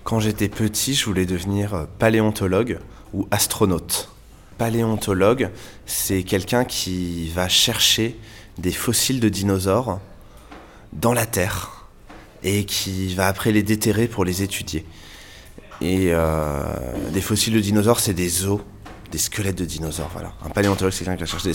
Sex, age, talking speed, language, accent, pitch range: male, 20-39, 150 wpm, English, French, 90-110 Hz